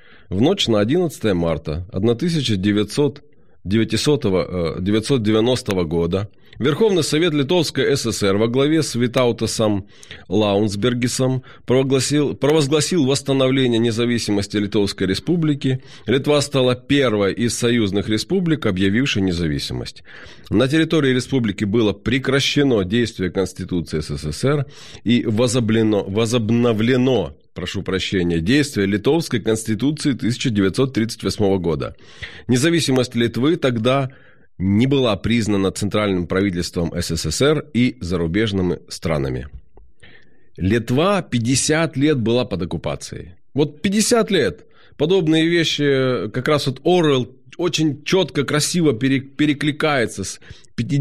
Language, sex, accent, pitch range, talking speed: Ukrainian, male, native, 100-140 Hz, 90 wpm